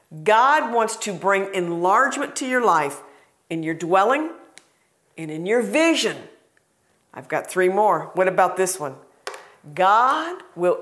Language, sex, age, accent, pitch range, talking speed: English, female, 50-69, American, 170-235 Hz, 140 wpm